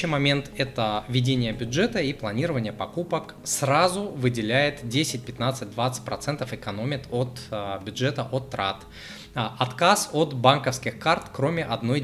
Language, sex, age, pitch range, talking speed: Russian, male, 20-39, 110-140 Hz, 120 wpm